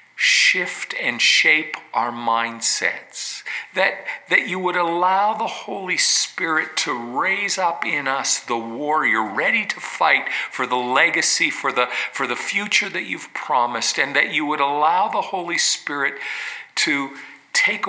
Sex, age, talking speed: male, 50-69, 145 wpm